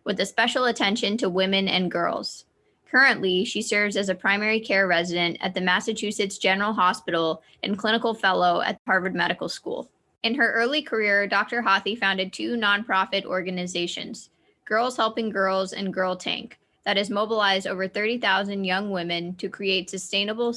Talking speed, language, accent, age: 160 wpm, English, American, 20-39